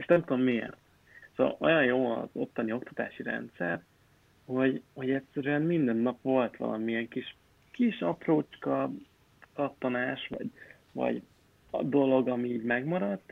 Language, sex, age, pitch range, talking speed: Hungarian, male, 30-49, 120-140 Hz, 130 wpm